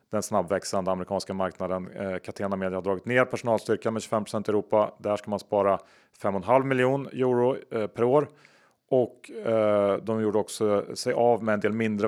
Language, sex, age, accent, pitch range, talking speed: Swedish, male, 30-49, Norwegian, 95-115 Hz, 180 wpm